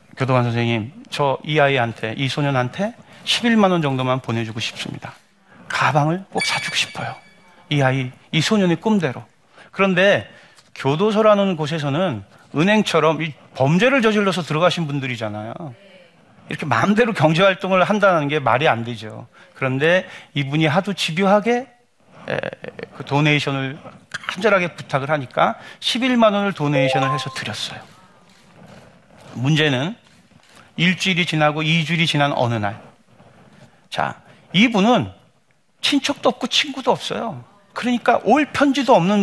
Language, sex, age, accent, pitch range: Korean, male, 40-59, native, 135-195 Hz